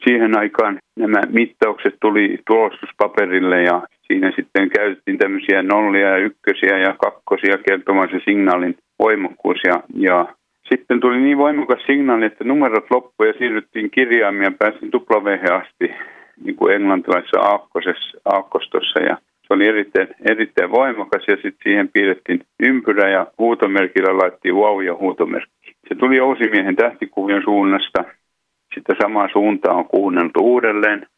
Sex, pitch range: male, 95-140 Hz